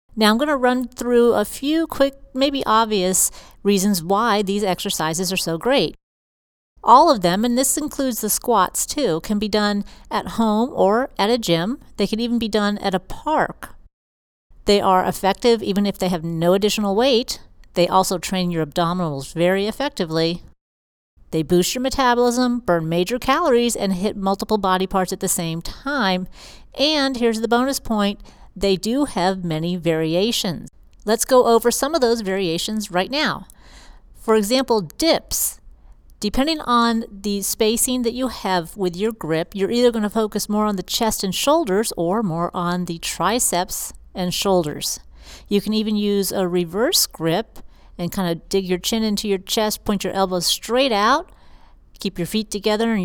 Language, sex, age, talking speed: English, female, 40-59, 170 wpm